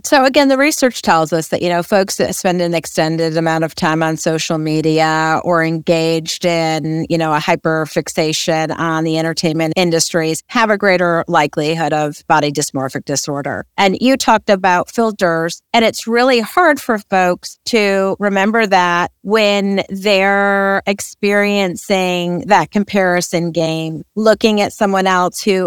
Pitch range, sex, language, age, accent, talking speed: 170-225 Hz, female, English, 30-49, American, 150 wpm